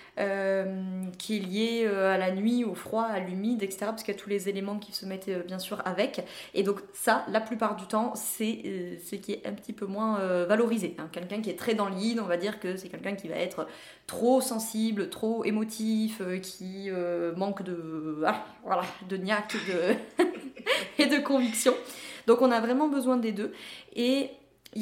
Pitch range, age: 190-230 Hz, 20-39